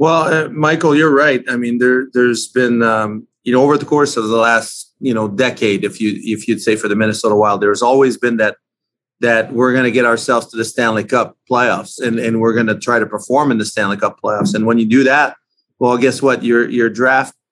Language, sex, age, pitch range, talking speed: English, male, 30-49, 115-135 Hz, 240 wpm